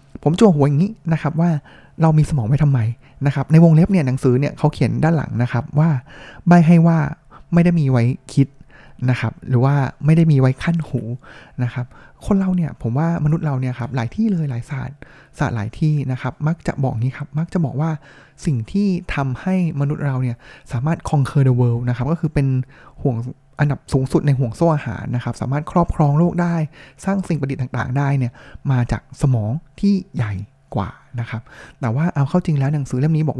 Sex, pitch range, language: male, 130-165 Hz, Thai